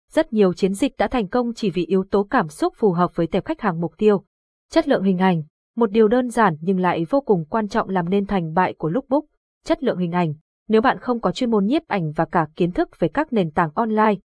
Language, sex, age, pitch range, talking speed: Vietnamese, female, 20-39, 190-235 Hz, 260 wpm